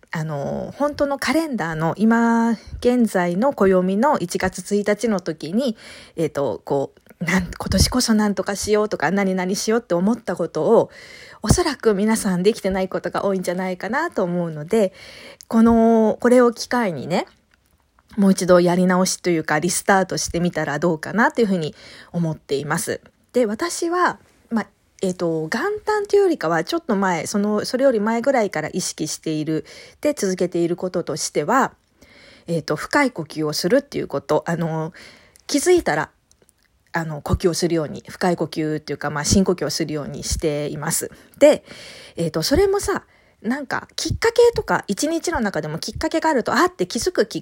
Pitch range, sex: 170-245 Hz, female